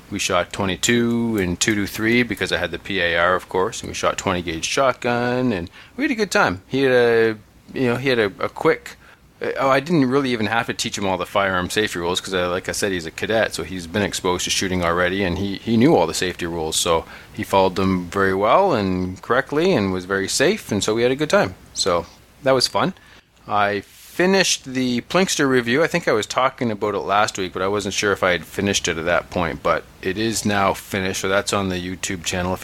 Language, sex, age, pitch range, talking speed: English, male, 30-49, 90-120 Hz, 245 wpm